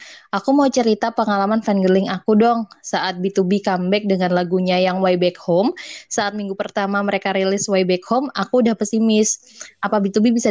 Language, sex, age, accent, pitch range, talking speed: Indonesian, female, 20-39, native, 185-220 Hz, 170 wpm